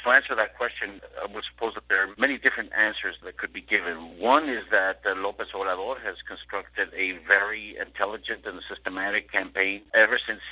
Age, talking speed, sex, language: 60-79, 190 wpm, male, English